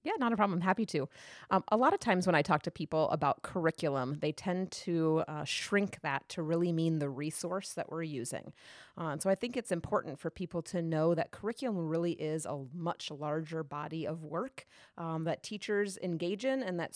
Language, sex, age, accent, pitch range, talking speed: English, female, 30-49, American, 160-200 Hz, 210 wpm